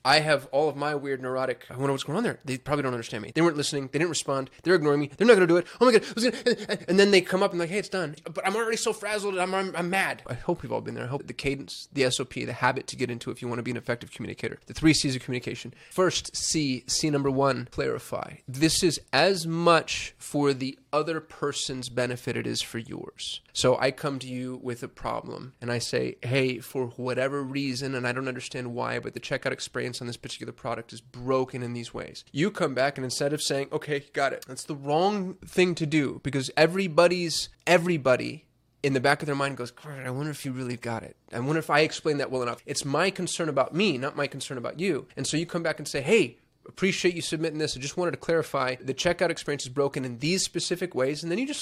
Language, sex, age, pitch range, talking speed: English, male, 20-39, 130-170 Hz, 255 wpm